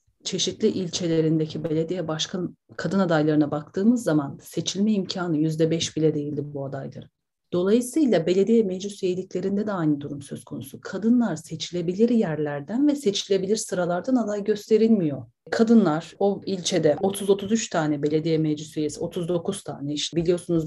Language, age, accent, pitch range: Turkish, 40-59, native, 155-200 Hz